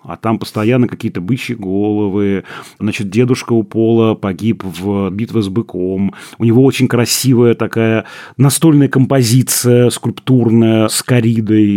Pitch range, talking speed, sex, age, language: 110-130 Hz, 130 wpm, male, 30-49, Russian